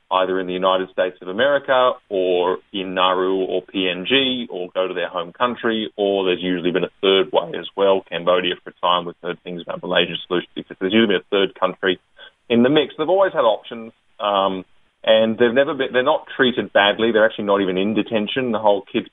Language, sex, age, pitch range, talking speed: English, male, 30-49, 95-115 Hz, 205 wpm